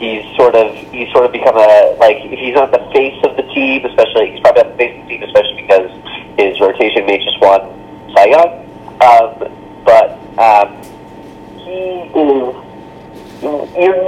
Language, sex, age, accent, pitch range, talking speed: English, male, 30-49, American, 110-170 Hz, 165 wpm